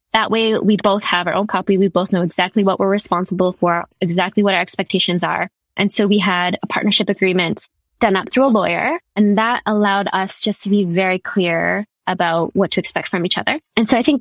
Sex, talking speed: female, 225 wpm